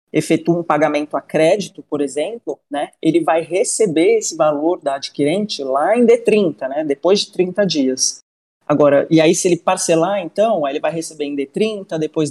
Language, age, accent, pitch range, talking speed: Portuguese, 30-49, Brazilian, 150-190 Hz, 175 wpm